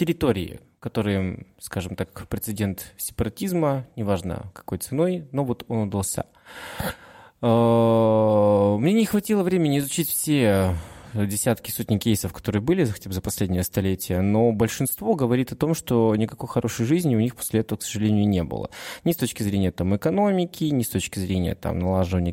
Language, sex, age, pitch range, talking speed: Russian, male, 20-39, 95-125 Hz, 150 wpm